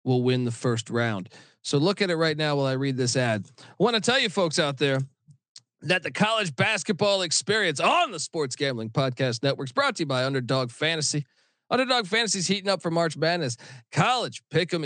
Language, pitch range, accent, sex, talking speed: English, 135-185 Hz, American, male, 210 wpm